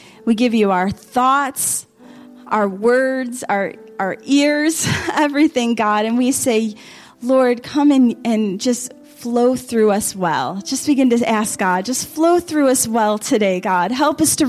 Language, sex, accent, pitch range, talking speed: Ukrainian, female, American, 215-260 Hz, 160 wpm